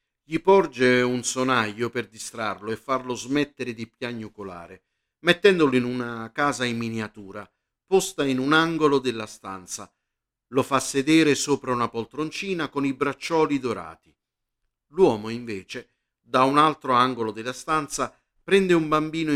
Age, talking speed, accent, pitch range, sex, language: 50-69, 135 wpm, native, 115-160 Hz, male, Italian